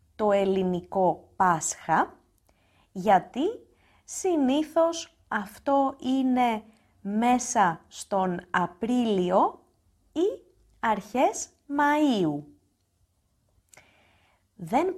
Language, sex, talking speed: Greek, female, 55 wpm